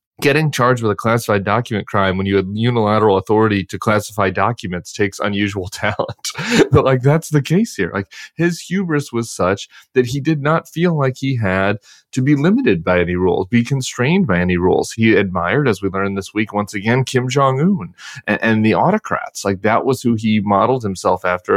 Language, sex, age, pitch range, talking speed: English, male, 30-49, 100-125 Hz, 200 wpm